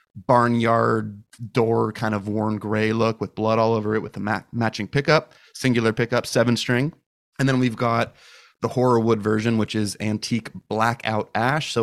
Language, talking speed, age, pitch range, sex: English, 170 wpm, 30-49, 105-115 Hz, male